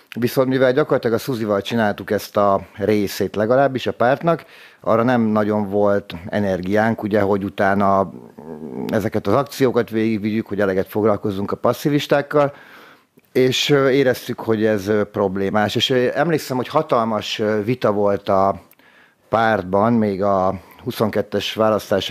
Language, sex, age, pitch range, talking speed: Hungarian, male, 50-69, 100-115 Hz, 120 wpm